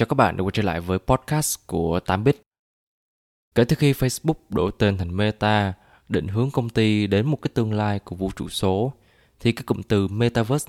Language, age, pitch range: Vietnamese, 20-39, 100-125 Hz